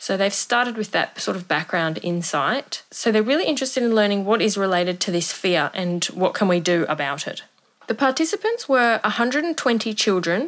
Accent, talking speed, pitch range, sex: Australian, 190 wpm, 175-220 Hz, female